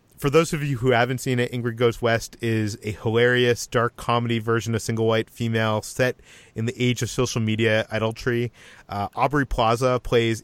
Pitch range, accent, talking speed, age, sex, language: 110-130 Hz, American, 185 wpm, 30-49, male, English